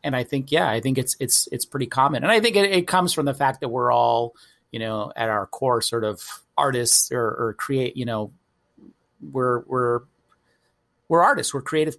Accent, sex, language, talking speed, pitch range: American, male, English, 210 wpm, 120-160 Hz